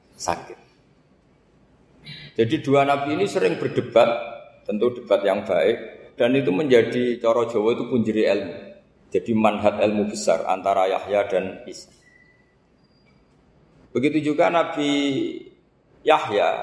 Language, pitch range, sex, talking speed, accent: Indonesian, 110-140 Hz, male, 110 wpm, native